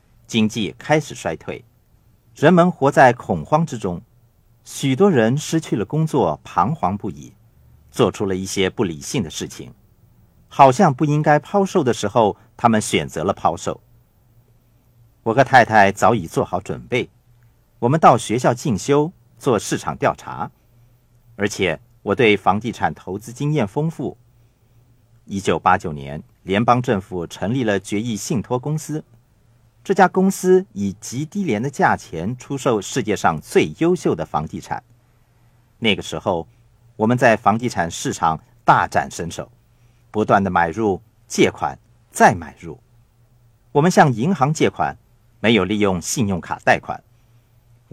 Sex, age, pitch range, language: male, 50-69, 110-130 Hz, Chinese